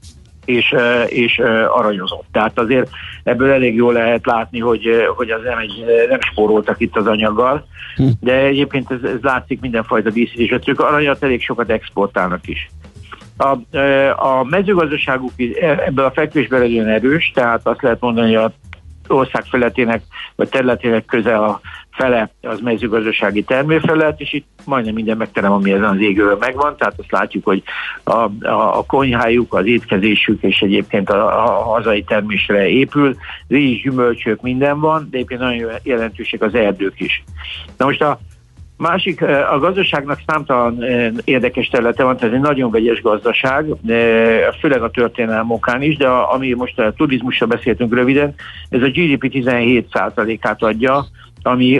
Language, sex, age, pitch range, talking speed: Hungarian, male, 60-79, 110-135 Hz, 150 wpm